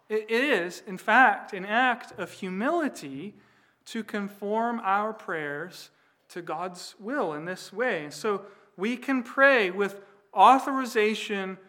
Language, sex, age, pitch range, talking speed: English, male, 40-59, 180-220 Hz, 125 wpm